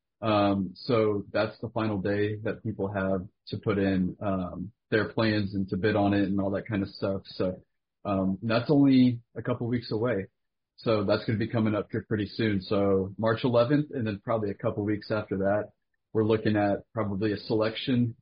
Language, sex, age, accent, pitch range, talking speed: English, male, 30-49, American, 100-115 Hz, 210 wpm